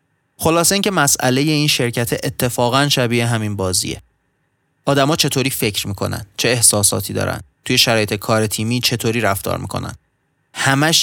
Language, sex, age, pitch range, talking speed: Persian, male, 30-49, 110-135 Hz, 130 wpm